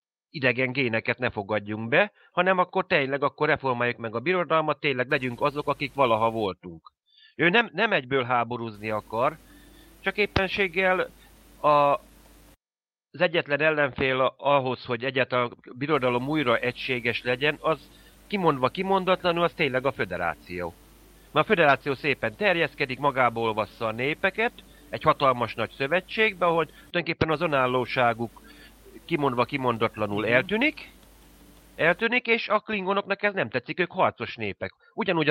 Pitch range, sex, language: 125-175 Hz, male, Hungarian